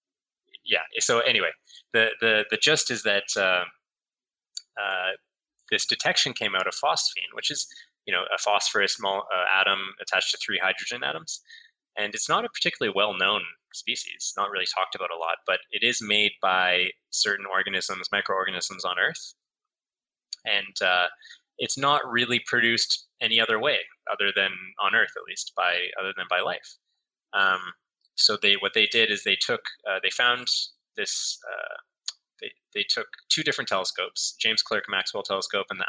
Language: English